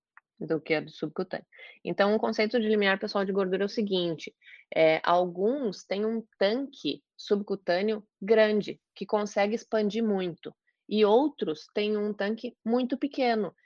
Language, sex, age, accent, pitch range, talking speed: Portuguese, female, 20-39, Brazilian, 180-225 Hz, 150 wpm